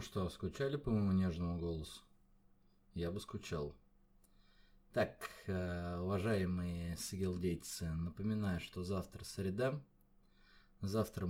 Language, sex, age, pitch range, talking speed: Russian, male, 20-39, 90-115 Hz, 90 wpm